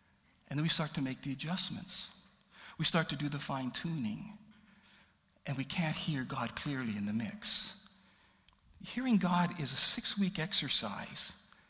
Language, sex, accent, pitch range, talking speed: English, male, American, 130-185 Hz, 150 wpm